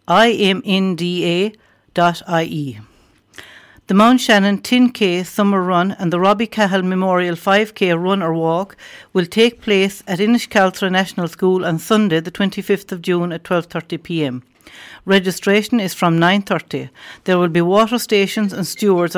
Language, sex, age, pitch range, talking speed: English, female, 60-79, 175-210 Hz, 130 wpm